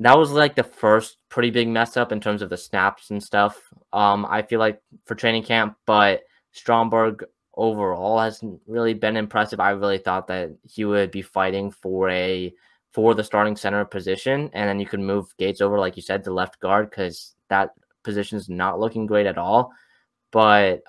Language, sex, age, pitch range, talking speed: English, male, 10-29, 95-110 Hz, 195 wpm